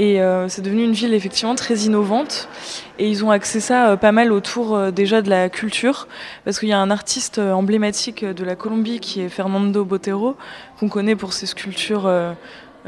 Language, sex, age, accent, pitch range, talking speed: French, female, 20-39, French, 195-230 Hz, 205 wpm